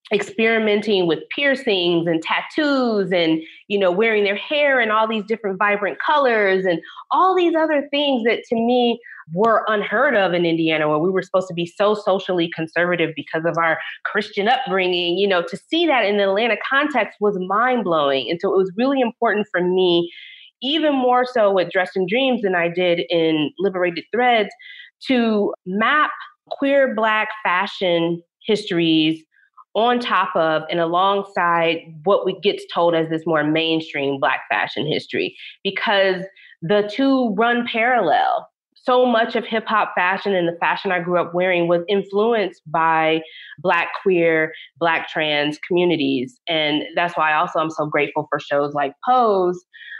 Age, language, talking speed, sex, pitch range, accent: 30-49, English, 160 wpm, female, 170-230 Hz, American